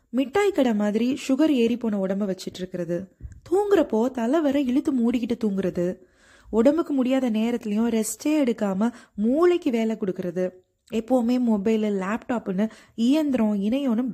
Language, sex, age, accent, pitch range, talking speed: Tamil, female, 20-39, native, 205-275 Hz, 110 wpm